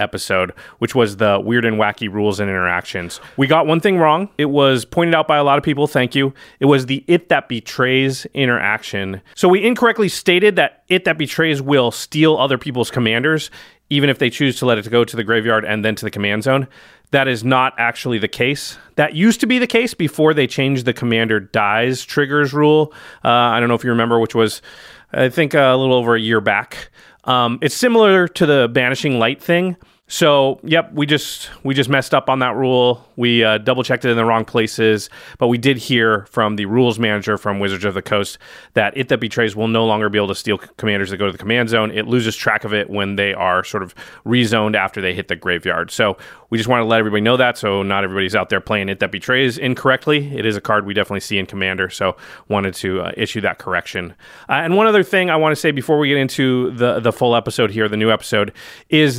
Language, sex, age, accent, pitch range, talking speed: English, male, 30-49, American, 110-140 Hz, 235 wpm